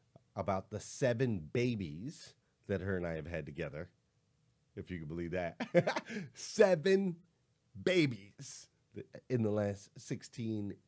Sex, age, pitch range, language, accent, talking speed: male, 30-49, 105-150 Hz, English, American, 120 wpm